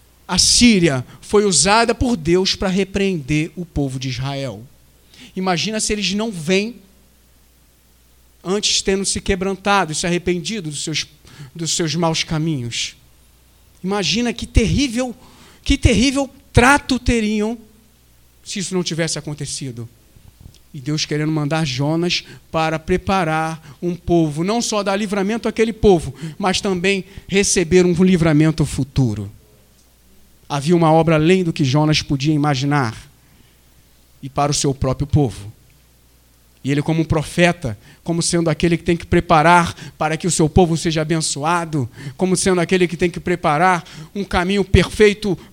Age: 40-59